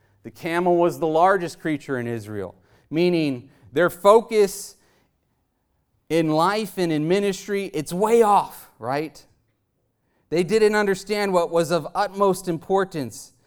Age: 30-49